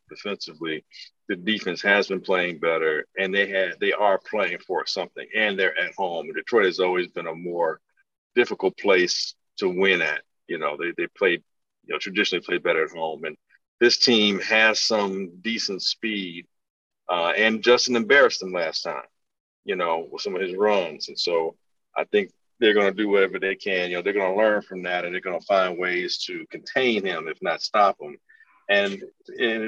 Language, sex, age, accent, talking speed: English, male, 50-69, American, 200 wpm